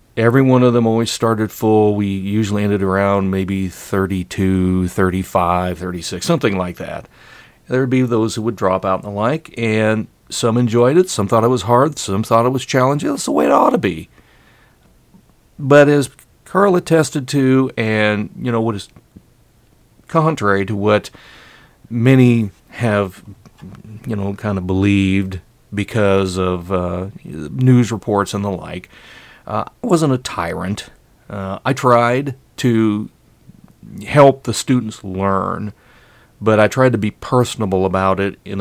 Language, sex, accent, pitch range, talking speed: English, male, American, 95-125 Hz, 155 wpm